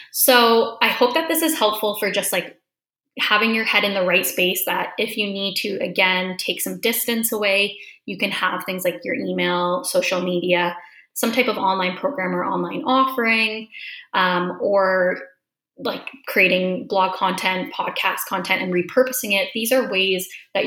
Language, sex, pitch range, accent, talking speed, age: English, female, 185-235 Hz, American, 170 wpm, 20-39